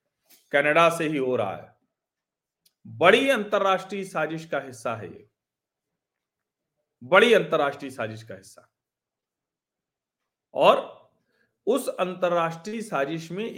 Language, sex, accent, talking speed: Hindi, male, native, 95 wpm